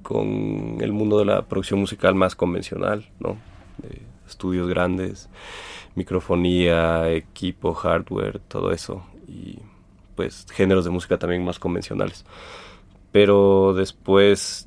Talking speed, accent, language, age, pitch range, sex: 115 wpm, Mexican, Spanish, 30-49, 90-100 Hz, male